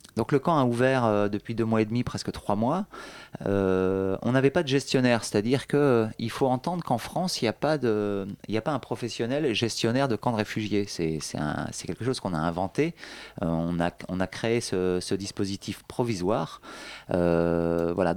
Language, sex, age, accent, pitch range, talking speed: French, male, 30-49, French, 105-135 Hz, 190 wpm